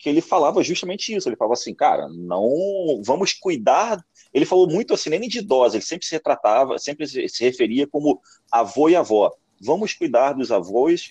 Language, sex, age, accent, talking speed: Portuguese, male, 30-49, Brazilian, 185 wpm